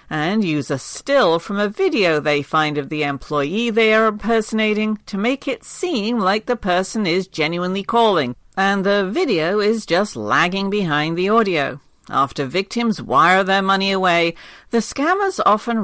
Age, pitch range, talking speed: 50-69, 170-235 Hz, 165 wpm